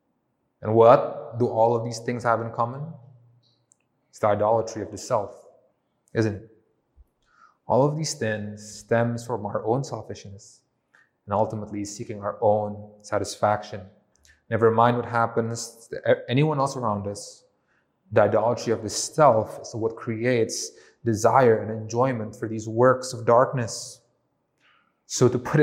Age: 20-39